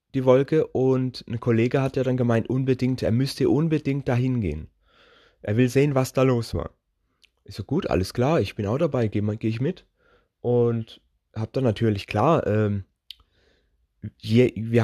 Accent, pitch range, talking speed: German, 110-135 Hz, 175 wpm